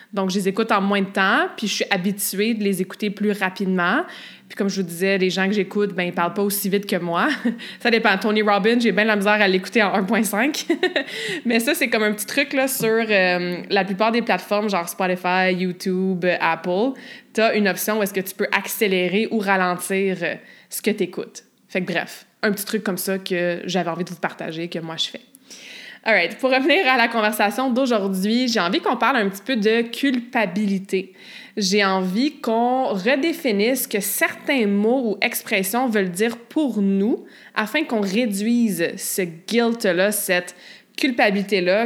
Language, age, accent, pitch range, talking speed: French, 20-39, Canadian, 190-235 Hz, 200 wpm